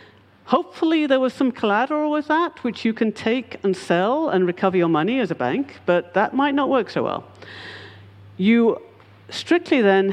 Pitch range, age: 140-205 Hz, 50-69